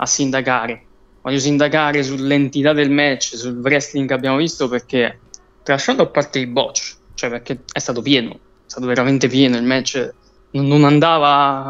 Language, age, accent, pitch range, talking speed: Italian, 20-39, native, 135-155 Hz, 165 wpm